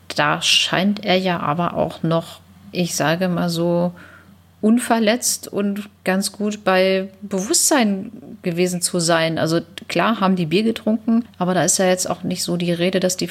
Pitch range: 165-195 Hz